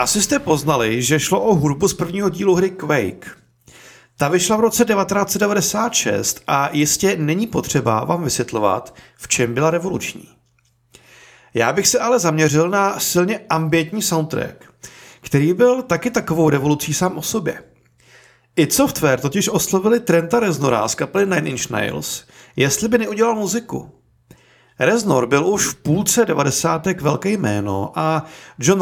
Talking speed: 145 wpm